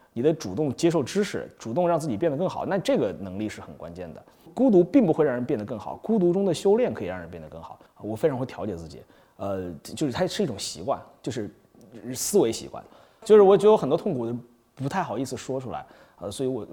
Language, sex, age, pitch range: Chinese, male, 30-49, 100-165 Hz